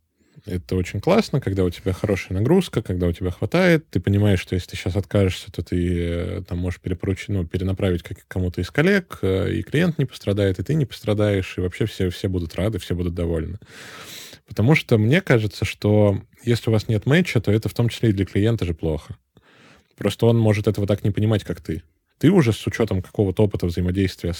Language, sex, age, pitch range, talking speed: Russian, male, 20-39, 90-115 Hz, 200 wpm